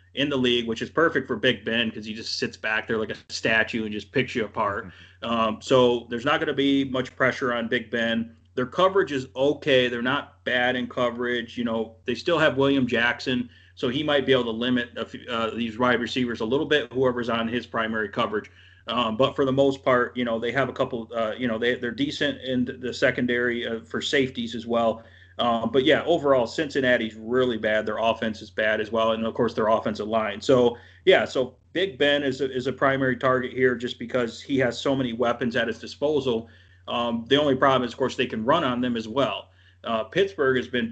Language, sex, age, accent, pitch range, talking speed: English, male, 30-49, American, 115-130 Hz, 225 wpm